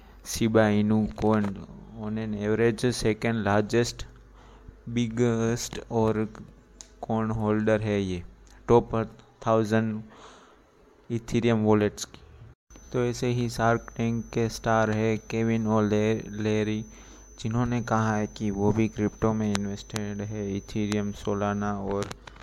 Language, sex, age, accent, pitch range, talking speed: Hindi, male, 20-39, native, 105-115 Hz, 115 wpm